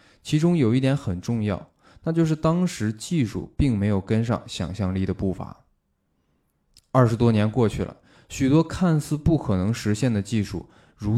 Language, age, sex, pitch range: Chinese, 20-39, male, 100-130 Hz